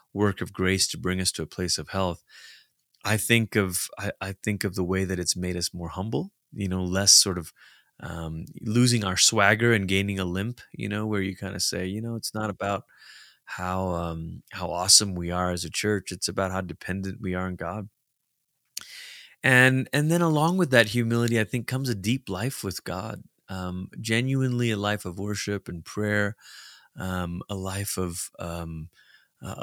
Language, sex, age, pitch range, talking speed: English, male, 30-49, 95-125 Hz, 195 wpm